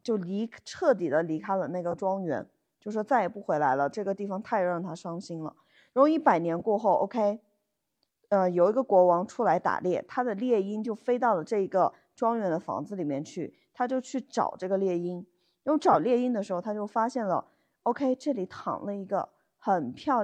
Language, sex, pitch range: Chinese, female, 185-255 Hz